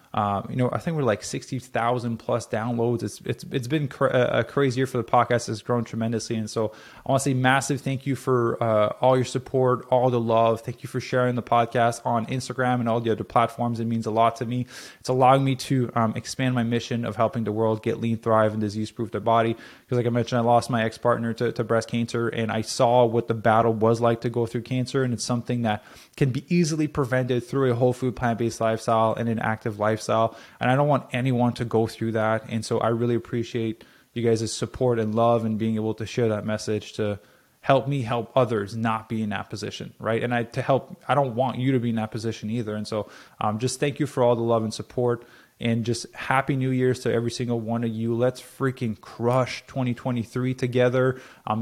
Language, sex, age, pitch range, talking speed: English, male, 20-39, 115-125 Hz, 235 wpm